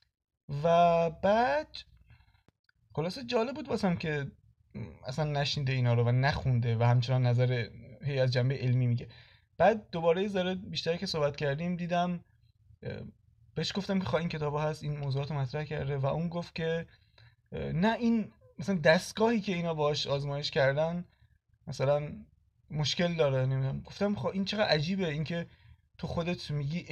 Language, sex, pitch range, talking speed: Persian, male, 135-180 Hz, 145 wpm